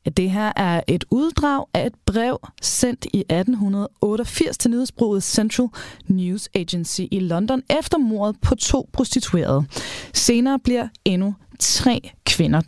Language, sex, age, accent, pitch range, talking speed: Danish, female, 20-39, native, 190-270 Hz, 135 wpm